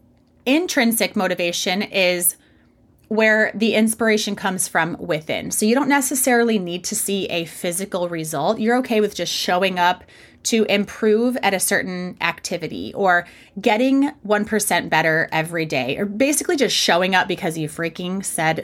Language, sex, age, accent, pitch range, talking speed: English, female, 30-49, American, 175-230 Hz, 150 wpm